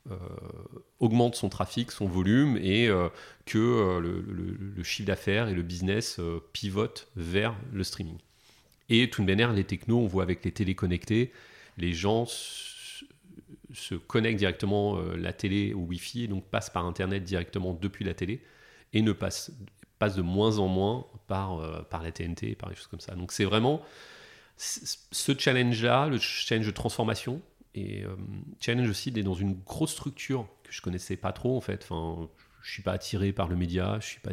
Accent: French